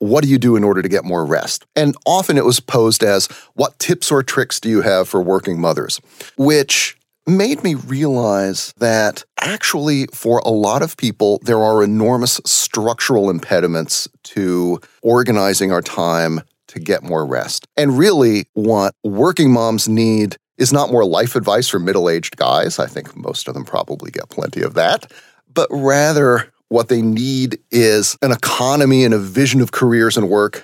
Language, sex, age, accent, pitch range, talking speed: English, male, 40-59, American, 100-135 Hz, 175 wpm